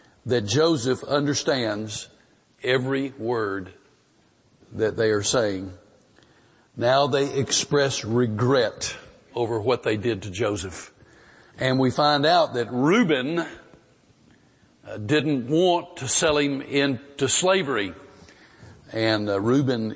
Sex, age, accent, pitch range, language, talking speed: male, 50-69, American, 105-130 Hz, English, 110 wpm